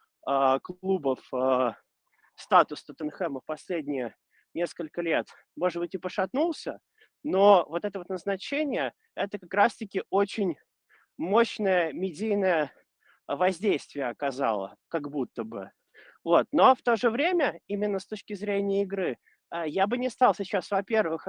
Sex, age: male, 20-39